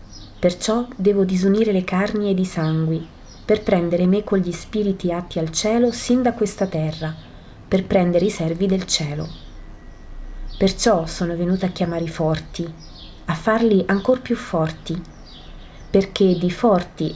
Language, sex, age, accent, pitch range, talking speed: Italian, female, 30-49, native, 160-200 Hz, 145 wpm